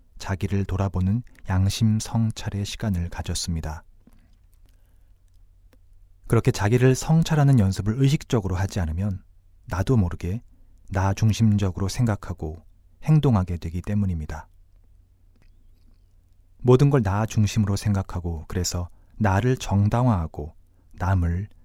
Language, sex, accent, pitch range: Korean, male, native, 90-105 Hz